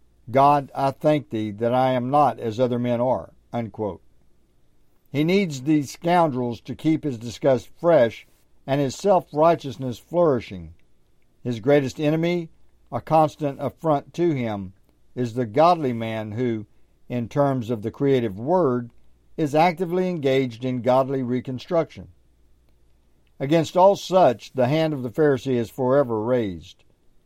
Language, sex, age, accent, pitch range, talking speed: English, male, 60-79, American, 110-150 Hz, 135 wpm